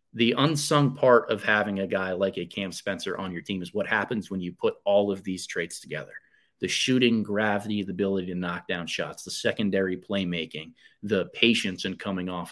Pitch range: 95-115 Hz